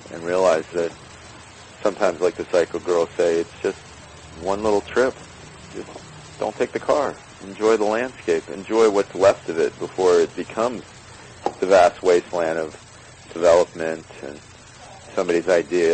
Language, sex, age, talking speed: English, male, 40-59, 145 wpm